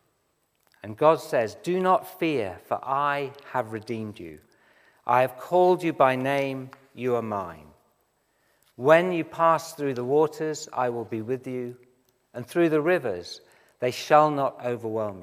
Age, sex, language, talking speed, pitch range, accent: 50-69, male, English, 155 wpm, 120-155 Hz, British